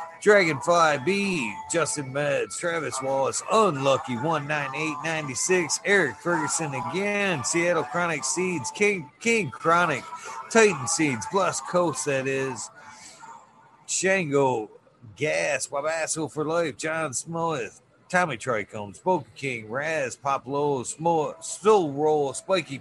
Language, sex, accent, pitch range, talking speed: English, male, American, 130-175 Hz, 115 wpm